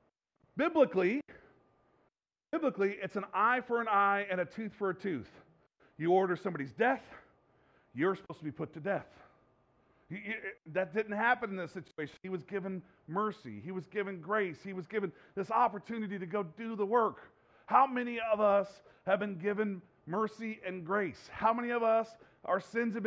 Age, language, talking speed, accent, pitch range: 40-59, English, 175 wpm, American, 190-240 Hz